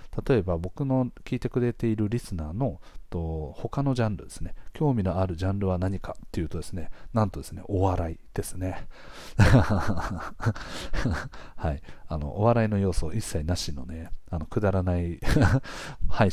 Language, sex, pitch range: Japanese, male, 85-110 Hz